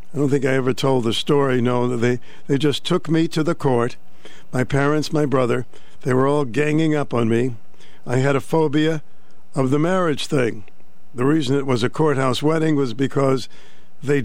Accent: American